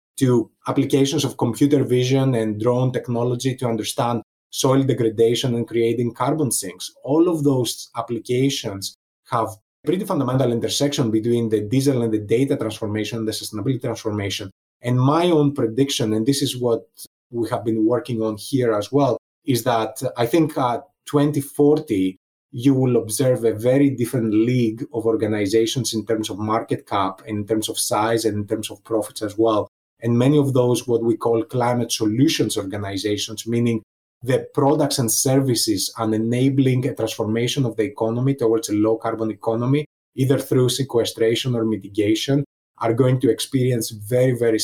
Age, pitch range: 20-39, 110-135 Hz